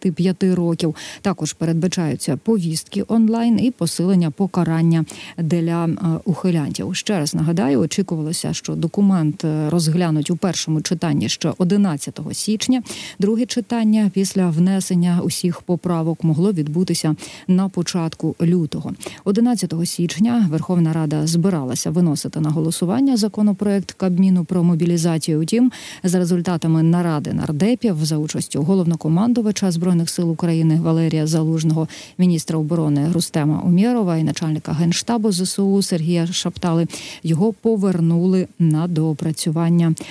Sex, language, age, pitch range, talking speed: female, Ukrainian, 40-59, 160-190 Hz, 110 wpm